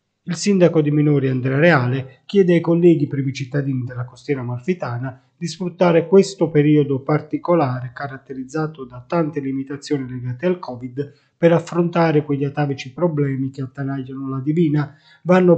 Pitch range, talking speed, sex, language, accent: 135-160 Hz, 140 wpm, male, Italian, native